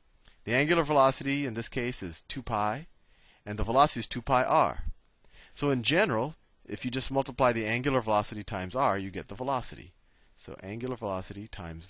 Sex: male